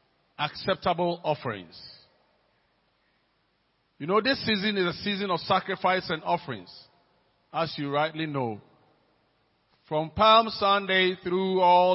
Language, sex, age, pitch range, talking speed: English, male, 50-69, 165-200 Hz, 110 wpm